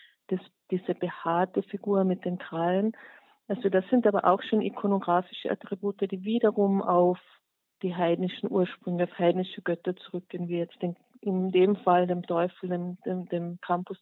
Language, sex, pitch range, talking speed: German, female, 180-200 Hz, 155 wpm